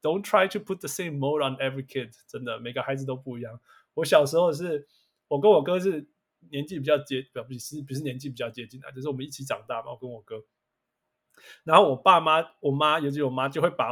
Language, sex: Chinese, male